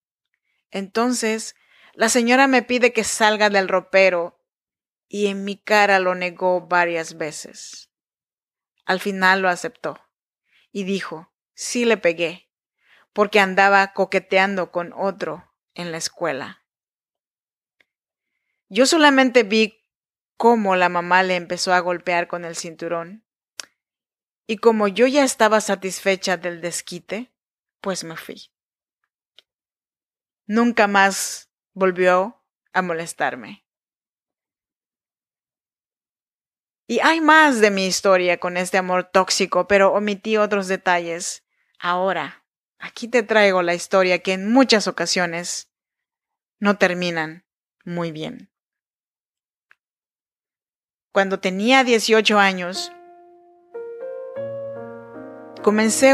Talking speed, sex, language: 105 wpm, female, Spanish